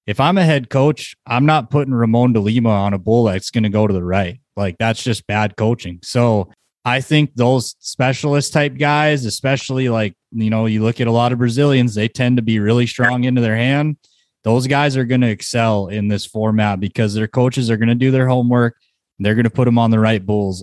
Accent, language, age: American, English, 20-39